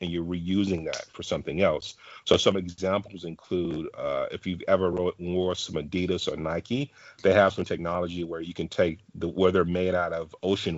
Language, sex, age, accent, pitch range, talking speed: English, male, 40-59, American, 85-95 Hz, 190 wpm